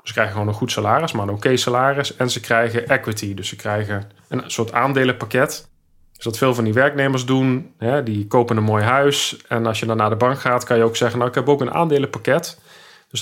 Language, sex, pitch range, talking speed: Dutch, male, 110-135 Hz, 230 wpm